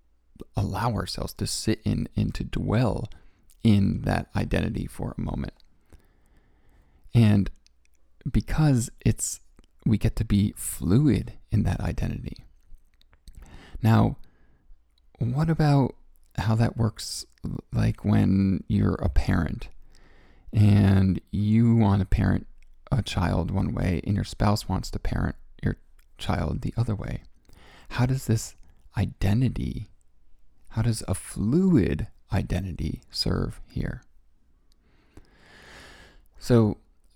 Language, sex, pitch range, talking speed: English, male, 80-110 Hz, 110 wpm